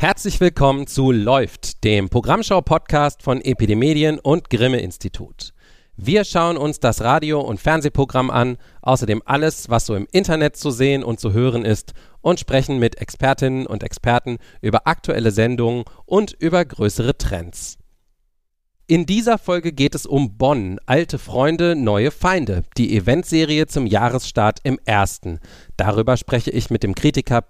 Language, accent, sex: German, German, male